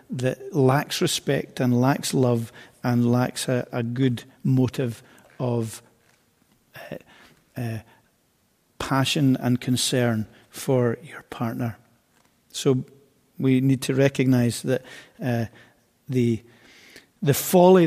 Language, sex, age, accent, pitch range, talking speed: English, male, 50-69, British, 120-135 Hz, 105 wpm